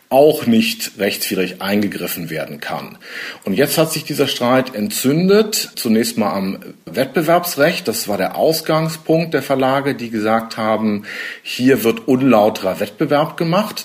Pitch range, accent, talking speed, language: 115-165 Hz, German, 135 wpm, German